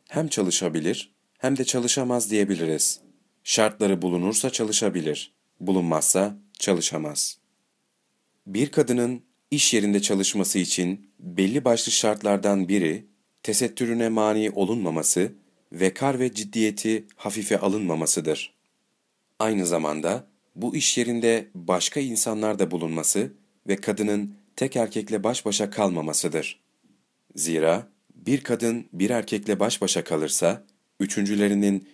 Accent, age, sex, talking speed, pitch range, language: native, 40-59, male, 105 wpm, 95-115 Hz, Turkish